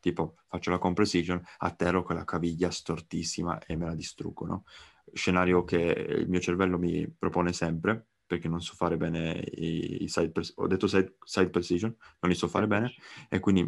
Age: 20-39